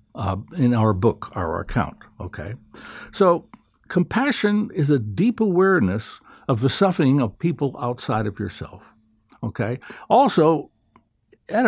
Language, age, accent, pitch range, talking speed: English, 60-79, American, 115-175 Hz, 125 wpm